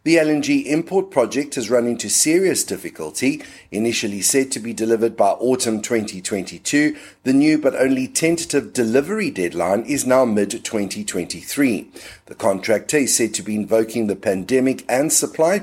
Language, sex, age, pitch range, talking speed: English, male, 50-69, 110-150 Hz, 150 wpm